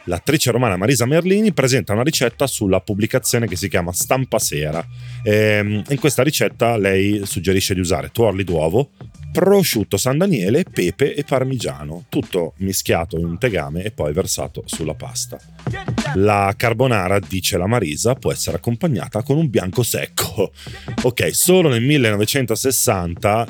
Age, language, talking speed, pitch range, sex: 30-49, Italian, 145 wpm, 90-125 Hz, male